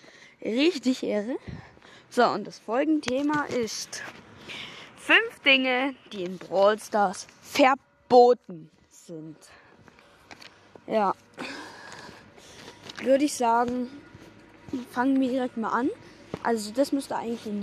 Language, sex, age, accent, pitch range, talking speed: German, female, 20-39, German, 230-280 Hz, 100 wpm